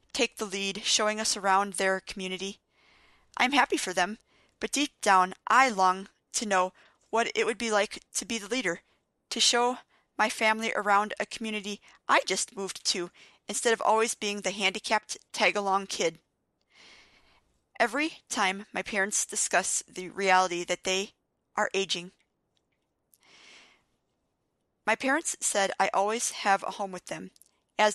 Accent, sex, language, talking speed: American, female, English, 150 wpm